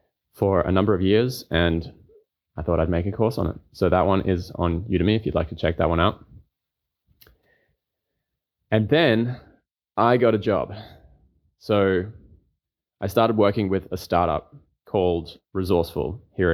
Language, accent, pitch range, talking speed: English, Australian, 85-100 Hz, 160 wpm